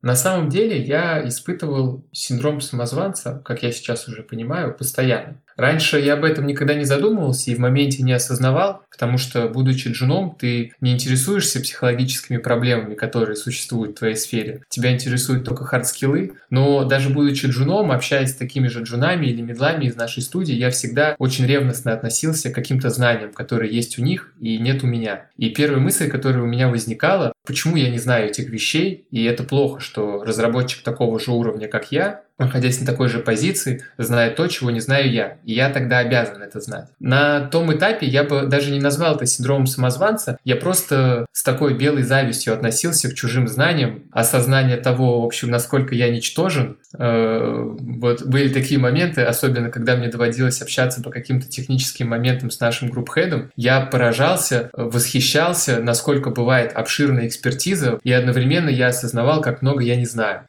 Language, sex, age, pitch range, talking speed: Russian, male, 20-39, 120-140 Hz, 170 wpm